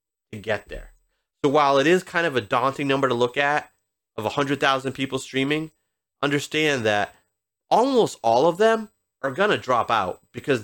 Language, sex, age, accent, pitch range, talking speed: English, male, 30-49, American, 110-140 Hz, 170 wpm